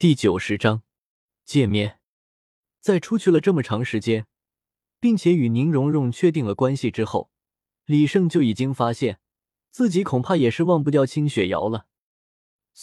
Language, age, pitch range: Chinese, 20-39, 110-165 Hz